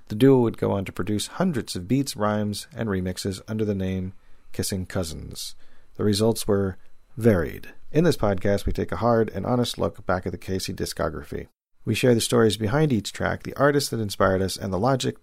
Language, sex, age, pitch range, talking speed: English, male, 40-59, 95-115 Hz, 205 wpm